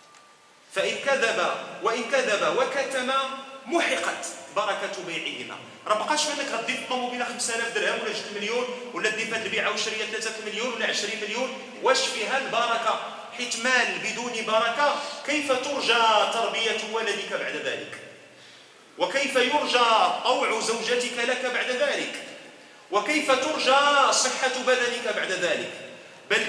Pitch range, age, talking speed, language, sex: 215-265 Hz, 40-59, 120 wpm, Arabic, male